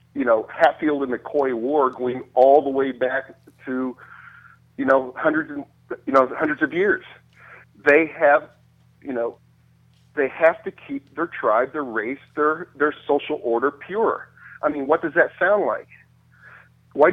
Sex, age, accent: male, 50-69, American